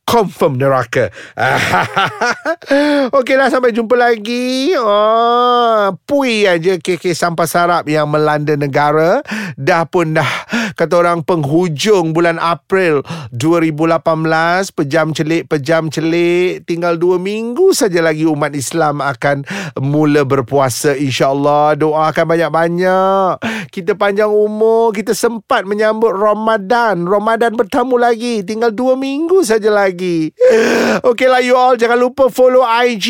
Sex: male